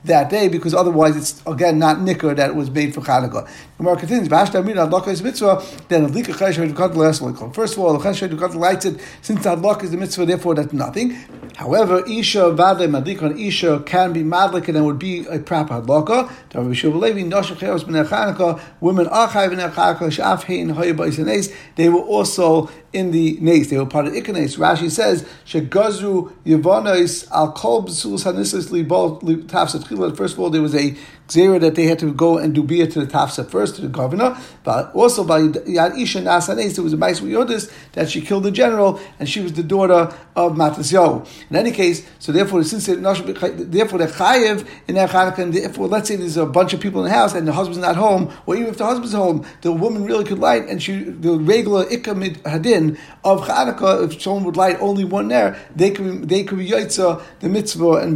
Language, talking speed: English, 160 wpm